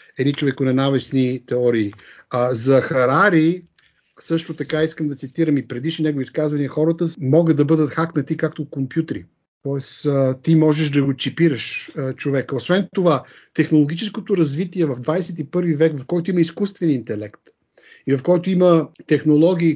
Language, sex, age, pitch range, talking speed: Bulgarian, male, 50-69, 145-175 Hz, 145 wpm